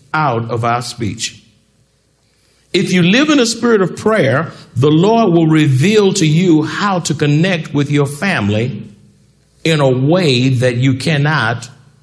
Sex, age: male, 50-69